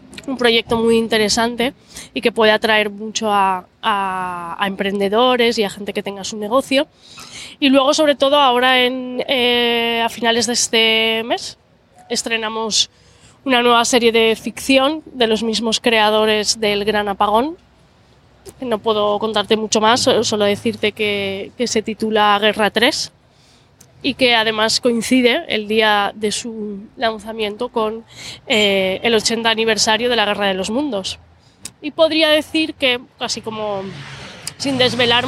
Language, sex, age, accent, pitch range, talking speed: Spanish, female, 20-39, Spanish, 215-255 Hz, 145 wpm